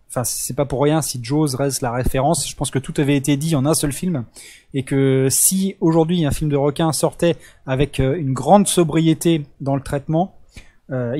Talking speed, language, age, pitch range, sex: 205 wpm, French, 20-39, 130-170 Hz, male